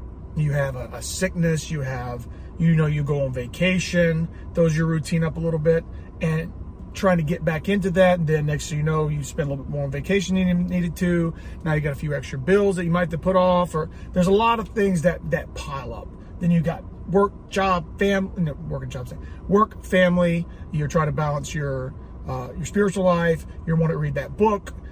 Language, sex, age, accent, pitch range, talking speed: English, male, 30-49, American, 135-175 Hz, 230 wpm